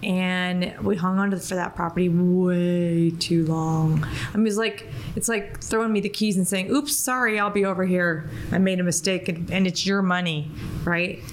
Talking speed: 210 wpm